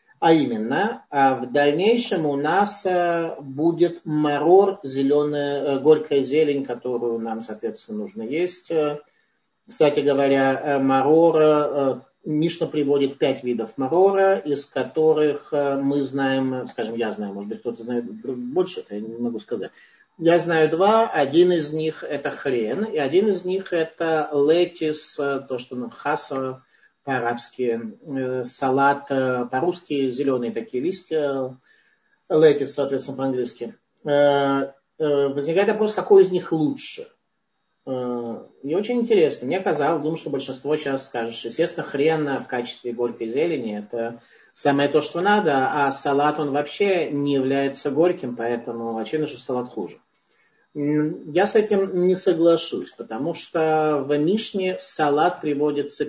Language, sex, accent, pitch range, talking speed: Russian, male, native, 135-170 Hz, 125 wpm